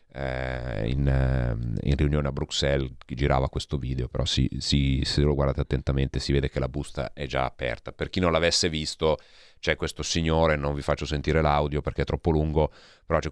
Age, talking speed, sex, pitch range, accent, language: 30-49, 195 wpm, male, 70-80 Hz, native, Italian